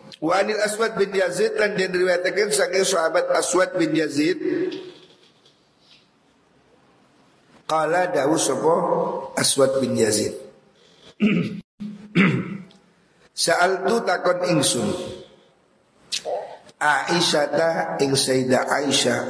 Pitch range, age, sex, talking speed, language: 125-185 Hz, 50-69, male, 80 wpm, Indonesian